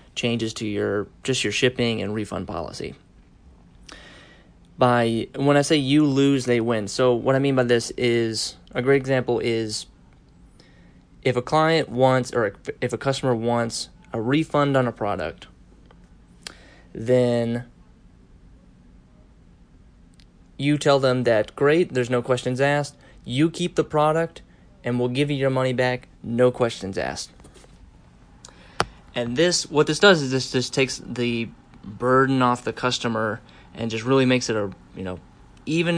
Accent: American